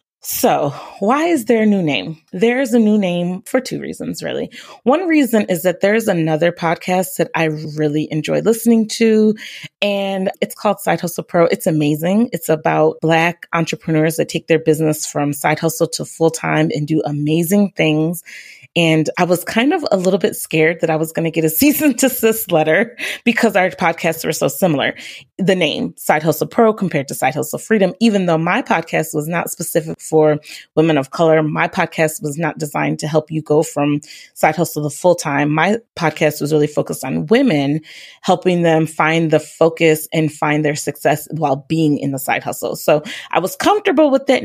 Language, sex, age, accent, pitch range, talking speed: English, female, 30-49, American, 155-205 Hz, 195 wpm